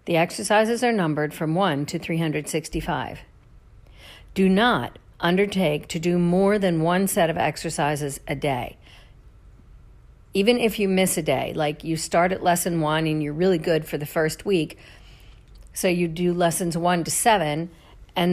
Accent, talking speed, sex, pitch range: American, 160 wpm, female, 150-190 Hz